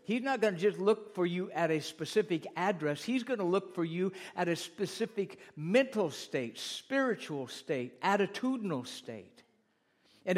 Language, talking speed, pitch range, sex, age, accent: English, 160 wpm, 150-205 Hz, male, 60-79, American